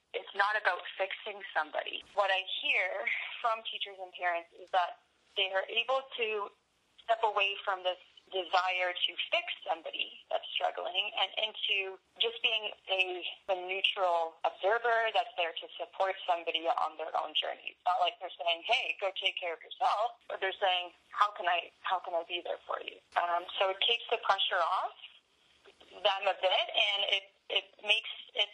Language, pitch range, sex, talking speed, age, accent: English, 180-225 Hz, female, 175 wpm, 20-39, American